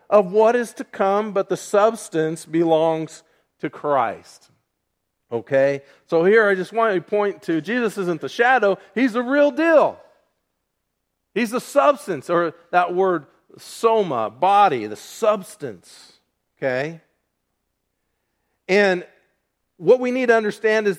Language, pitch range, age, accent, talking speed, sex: English, 175-225 Hz, 40-59, American, 130 wpm, male